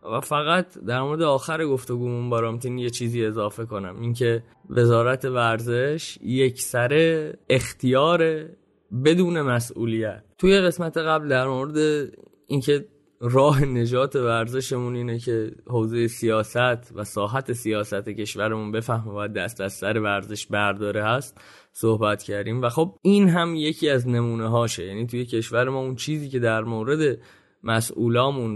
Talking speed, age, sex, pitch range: 135 wpm, 20-39, male, 115-145 Hz